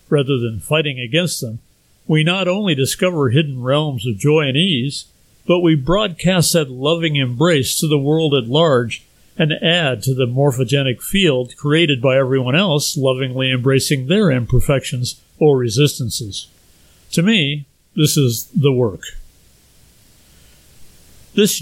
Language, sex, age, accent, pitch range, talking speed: English, male, 50-69, American, 130-160 Hz, 135 wpm